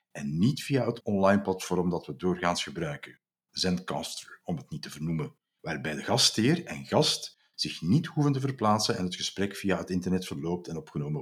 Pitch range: 100-145 Hz